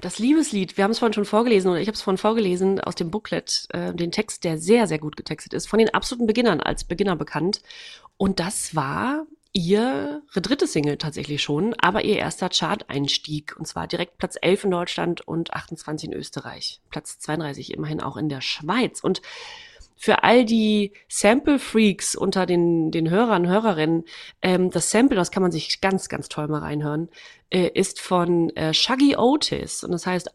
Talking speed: 185 wpm